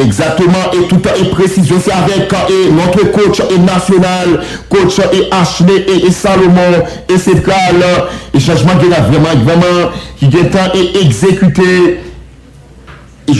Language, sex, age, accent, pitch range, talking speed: English, male, 50-69, French, 170-185 Hz, 145 wpm